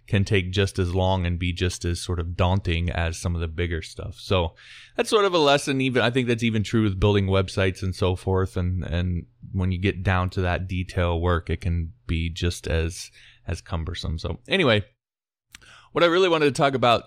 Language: English